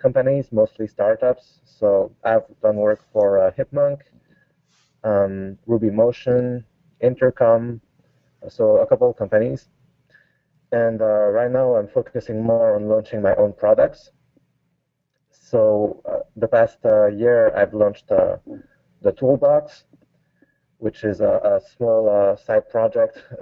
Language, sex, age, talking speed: English, male, 20-39, 125 wpm